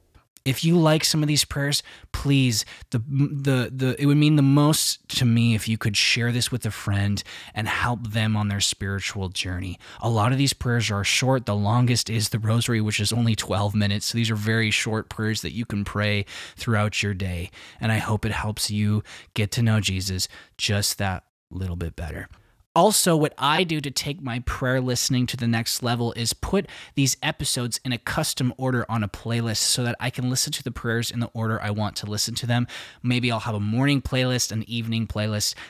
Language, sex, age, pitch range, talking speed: English, male, 20-39, 105-125 Hz, 215 wpm